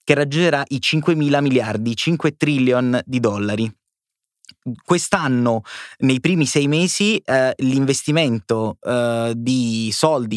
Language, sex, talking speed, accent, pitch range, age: Italian, male, 115 wpm, native, 120-140 Hz, 20-39